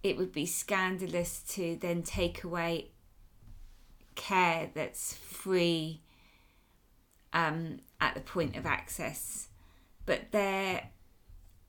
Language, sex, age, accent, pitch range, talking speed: English, female, 20-39, British, 135-185 Hz, 100 wpm